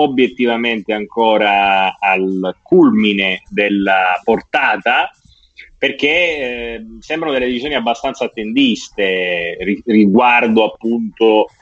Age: 30-49